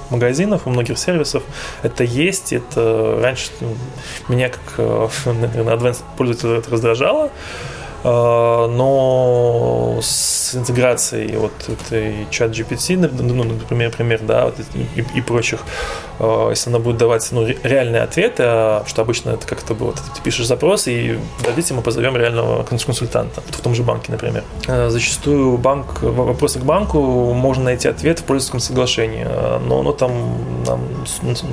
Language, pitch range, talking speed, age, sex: Russian, 115-130 Hz, 135 wpm, 20-39, male